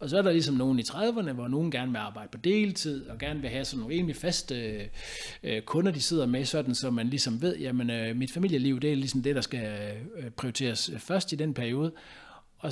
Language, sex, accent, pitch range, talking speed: Danish, male, native, 115-155 Hz, 220 wpm